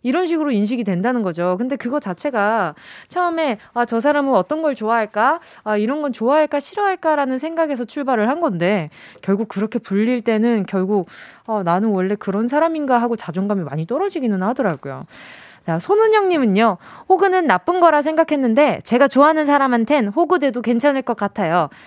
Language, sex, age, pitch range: Korean, female, 20-39, 205-295 Hz